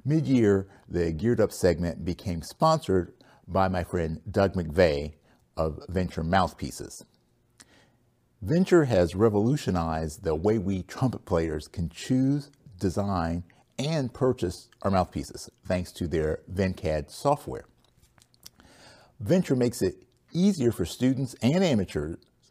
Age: 50-69